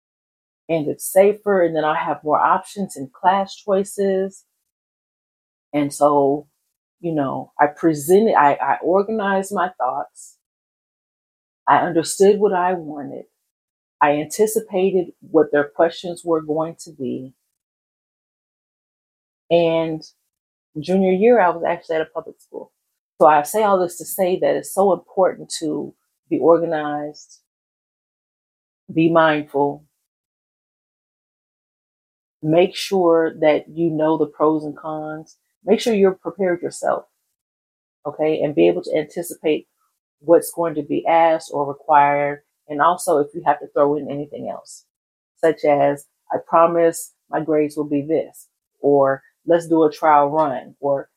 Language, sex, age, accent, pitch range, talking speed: English, female, 40-59, American, 145-180 Hz, 135 wpm